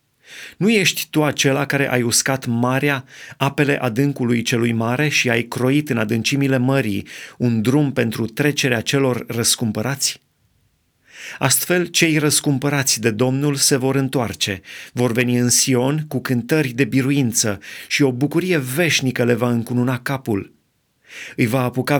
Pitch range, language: 120-145 Hz, Romanian